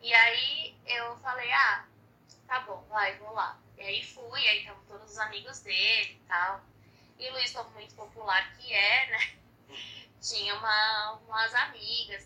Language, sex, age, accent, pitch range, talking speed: Portuguese, female, 10-29, Brazilian, 175-250 Hz, 165 wpm